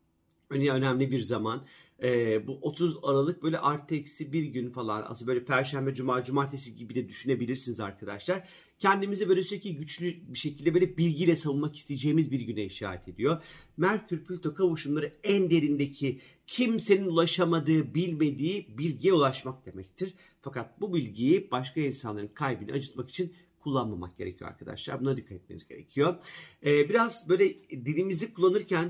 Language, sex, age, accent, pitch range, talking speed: Turkish, male, 40-59, native, 125-170 Hz, 135 wpm